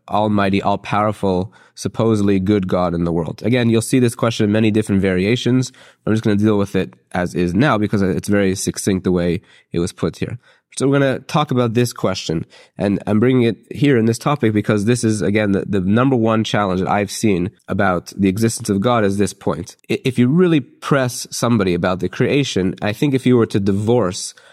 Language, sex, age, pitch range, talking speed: English, male, 30-49, 100-120 Hz, 215 wpm